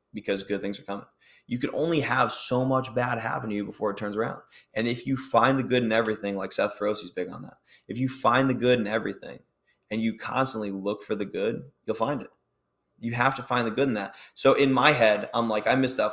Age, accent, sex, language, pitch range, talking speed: 20-39, American, male, English, 105-125 Hz, 250 wpm